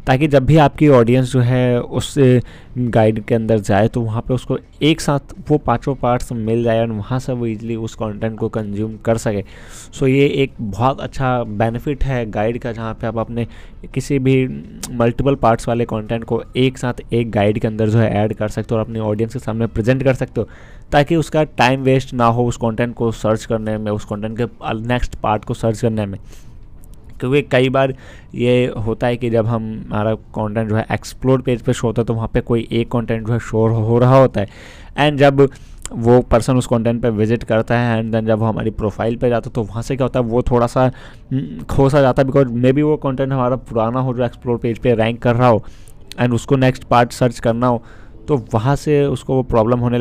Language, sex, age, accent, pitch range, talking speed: Hindi, male, 20-39, native, 110-130 Hz, 230 wpm